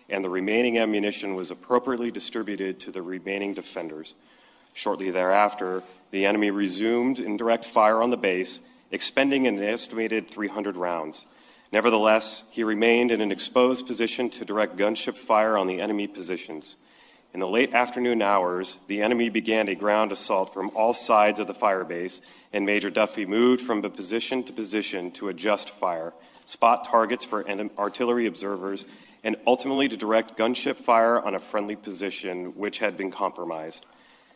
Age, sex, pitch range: 40-59, male, 100-115 Hz